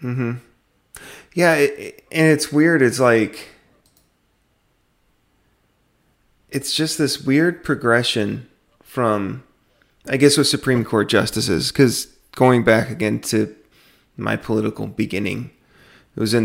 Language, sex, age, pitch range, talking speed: English, male, 30-49, 110-135 Hz, 115 wpm